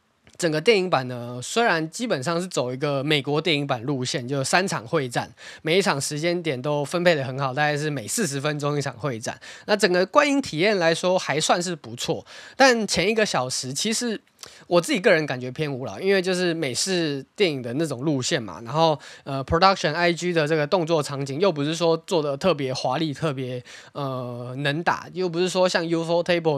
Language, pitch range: Chinese, 140-175 Hz